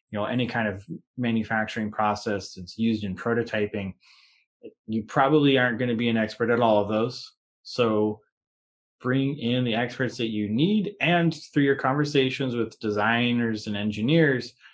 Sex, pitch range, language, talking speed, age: male, 105-125 Hz, English, 160 wpm, 20-39